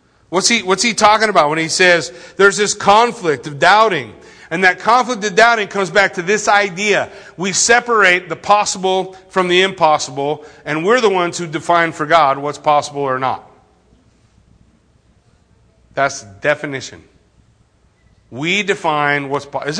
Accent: American